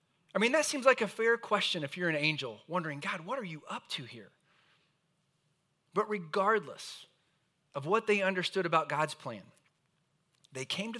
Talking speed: 175 wpm